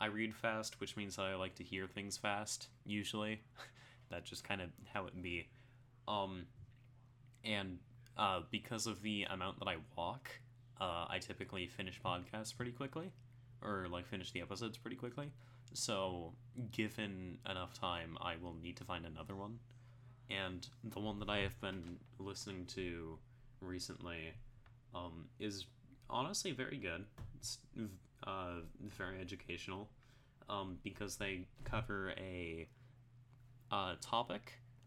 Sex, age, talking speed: male, 10-29, 140 wpm